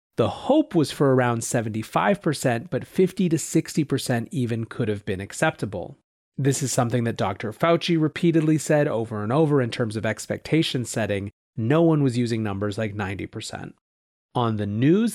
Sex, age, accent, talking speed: male, 30-49, American, 160 wpm